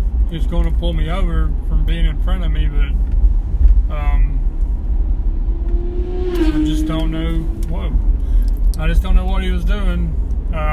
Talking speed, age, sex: 150 wpm, 20-39, male